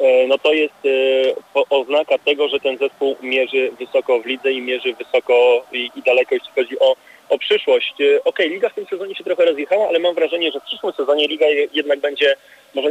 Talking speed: 195 wpm